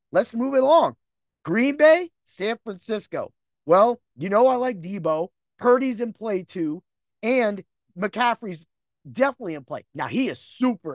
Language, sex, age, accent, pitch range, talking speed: English, male, 30-49, American, 165-245 Hz, 150 wpm